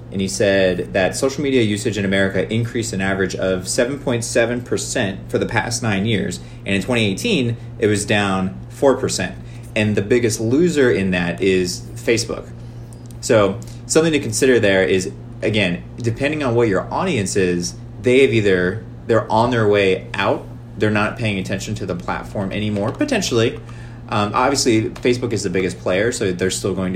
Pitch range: 95-120 Hz